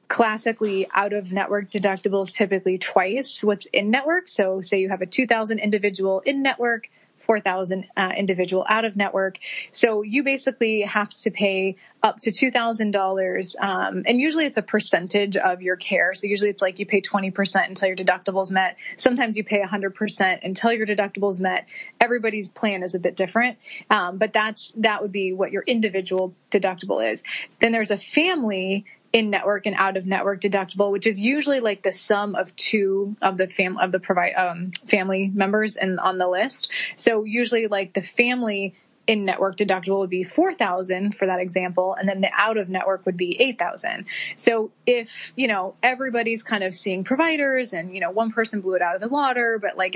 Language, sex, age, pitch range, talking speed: English, female, 20-39, 190-225 Hz, 180 wpm